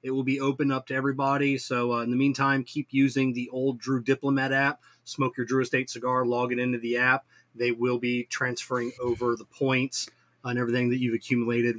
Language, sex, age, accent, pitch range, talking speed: English, male, 30-49, American, 125-155 Hz, 210 wpm